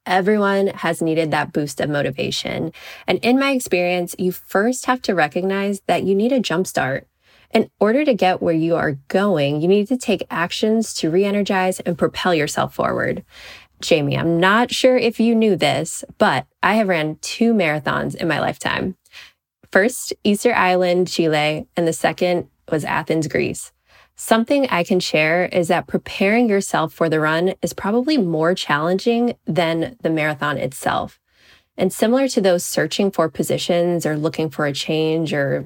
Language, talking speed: English, 165 wpm